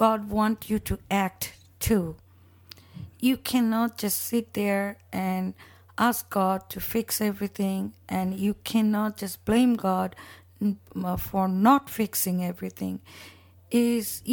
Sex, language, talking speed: female, English, 115 wpm